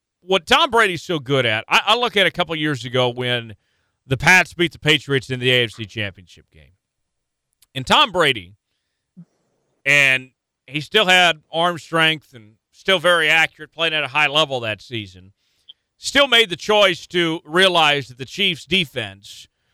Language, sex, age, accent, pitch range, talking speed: English, male, 40-59, American, 120-170 Hz, 165 wpm